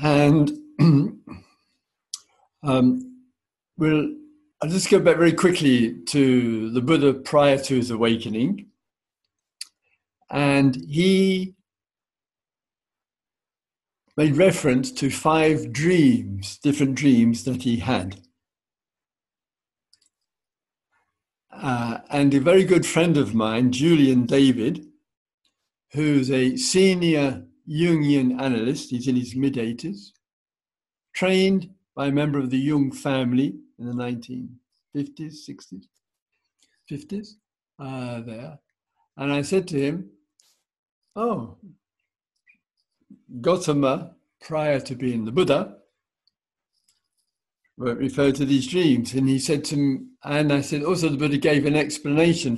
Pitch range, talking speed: 130-165 Hz, 105 wpm